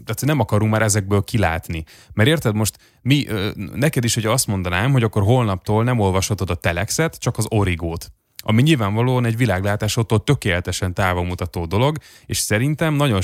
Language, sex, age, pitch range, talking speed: Hungarian, male, 30-49, 95-125 Hz, 165 wpm